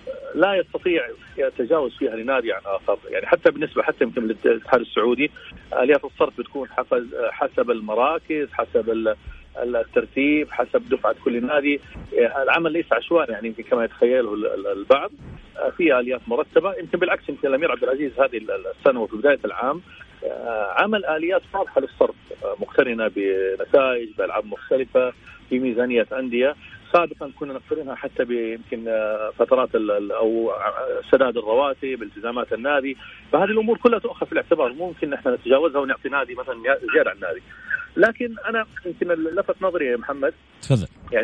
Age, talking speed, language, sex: 40-59, 135 wpm, Arabic, male